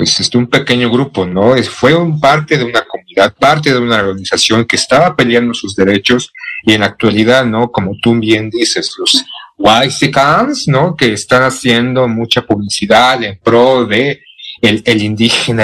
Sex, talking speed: male, 160 wpm